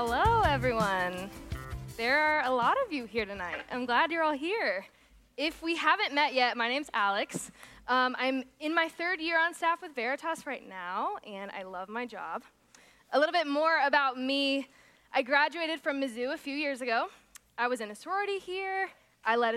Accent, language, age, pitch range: American, English, 20-39, 210-290 Hz